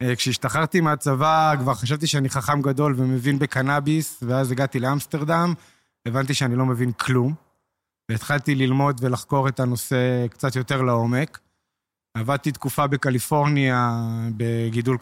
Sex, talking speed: male, 115 wpm